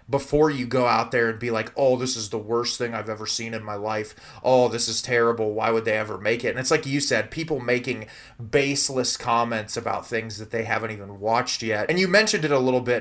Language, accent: English, American